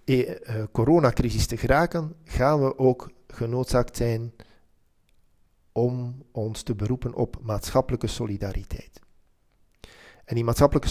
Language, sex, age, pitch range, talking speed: French, male, 40-59, 105-125 Hz, 110 wpm